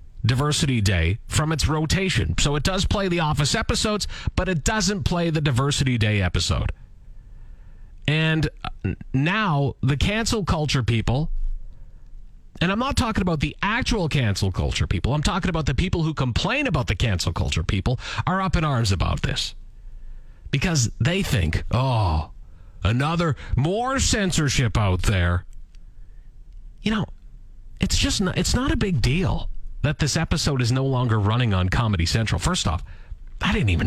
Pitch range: 100-160 Hz